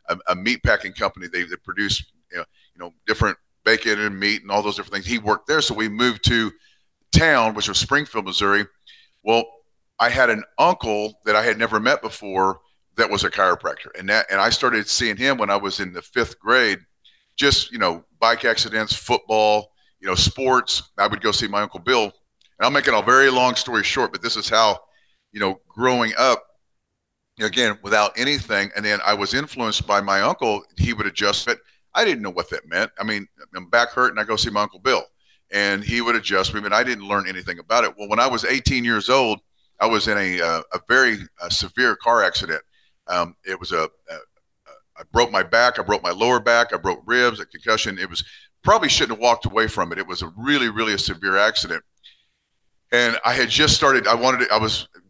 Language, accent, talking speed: English, American, 225 wpm